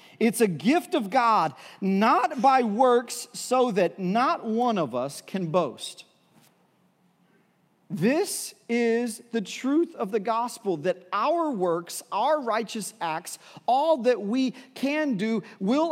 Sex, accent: male, American